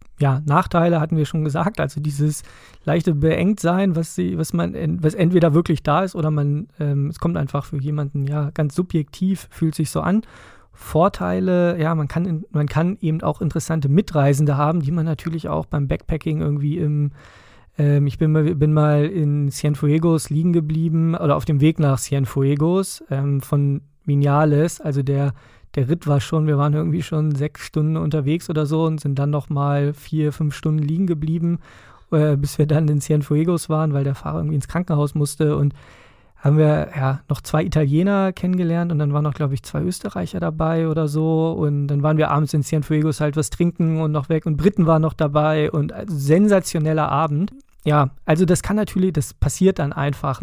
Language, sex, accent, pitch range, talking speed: German, male, German, 145-165 Hz, 190 wpm